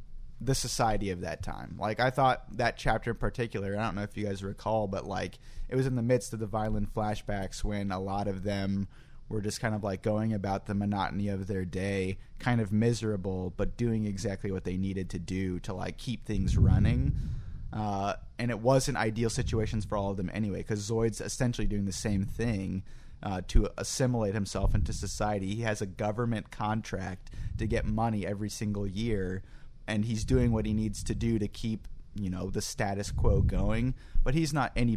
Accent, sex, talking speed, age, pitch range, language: American, male, 200 wpm, 30-49, 100-115 Hz, English